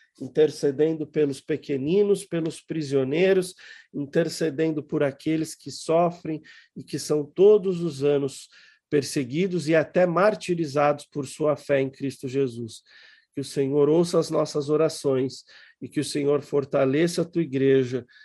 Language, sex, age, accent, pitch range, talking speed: Portuguese, male, 40-59, Brazilian, 145-180 Hz, 135 wpm